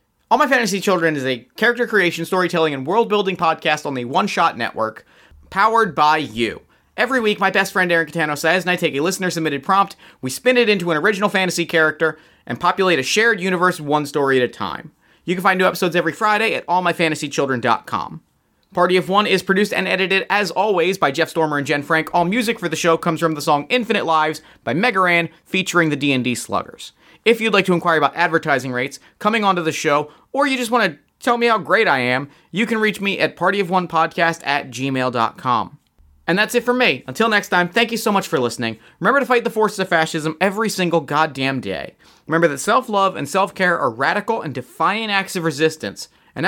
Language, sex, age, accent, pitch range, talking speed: English, male, 30-49, American, 145-195 Hz, 210 wpm